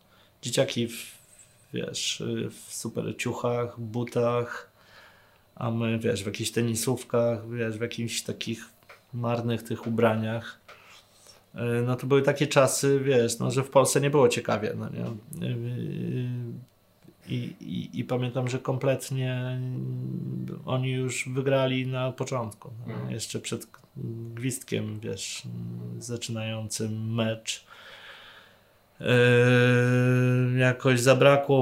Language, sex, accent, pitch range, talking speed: Polish, male, native, 110-130 Hz, 105 wpm